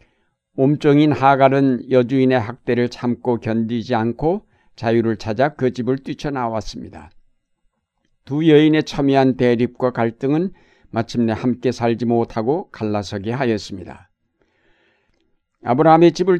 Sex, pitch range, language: male, 115-145 Hz, Korean